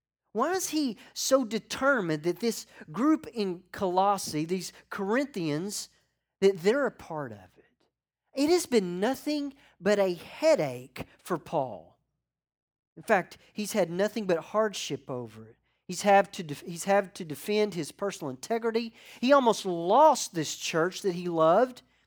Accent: American